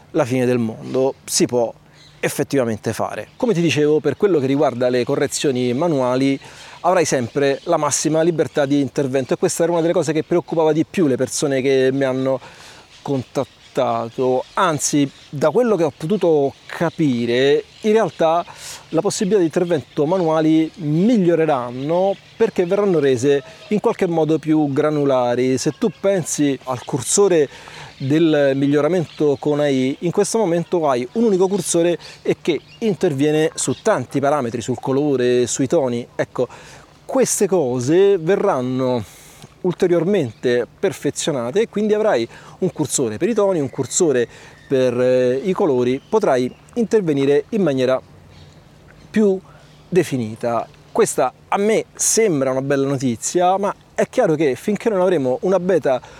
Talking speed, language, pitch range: 140 wpm, Italian, 130-185 Hz